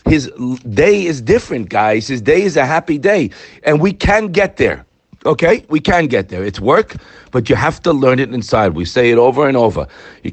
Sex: male